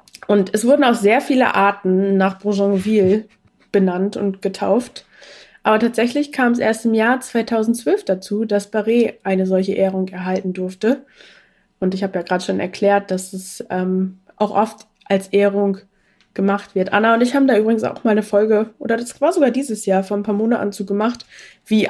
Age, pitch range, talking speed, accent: 20-39, 190-225 Hz, 180 wpm, German